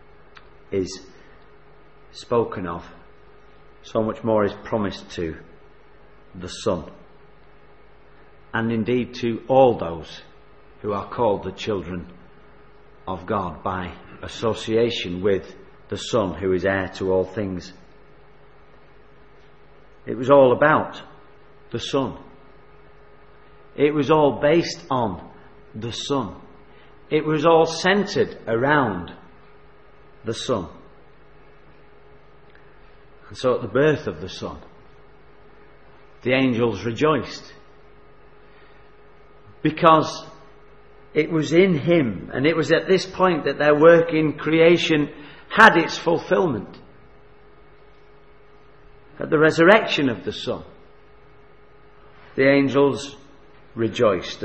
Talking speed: 100 wpm